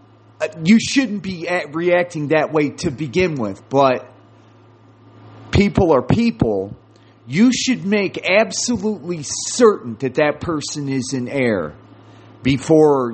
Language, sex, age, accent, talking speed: English, male, 40-59, American, 120 wpm